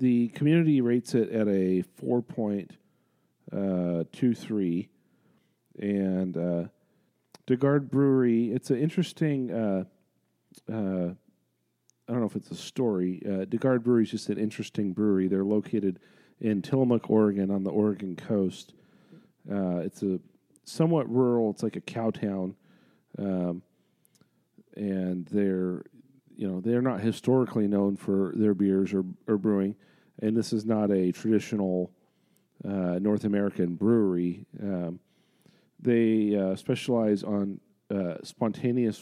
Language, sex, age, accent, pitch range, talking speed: English, male, 40-59, American, 95-115 Hz, 130 wpm